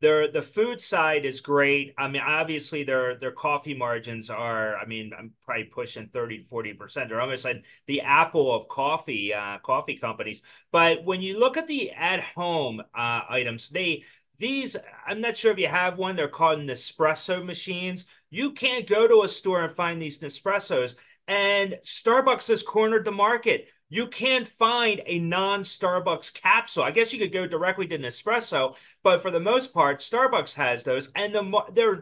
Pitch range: 160-240 Hz